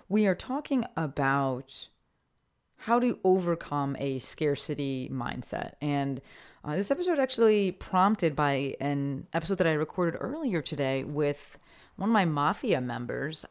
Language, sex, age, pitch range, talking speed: English, female, 30-49, 145-195 Hz, 135 wpm